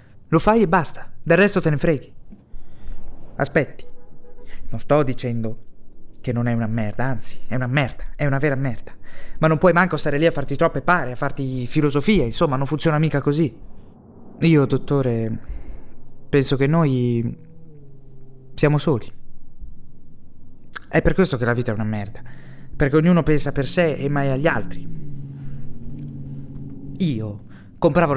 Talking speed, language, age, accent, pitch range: 150 wpm, Italian, 20-39, native, 120-165 Hz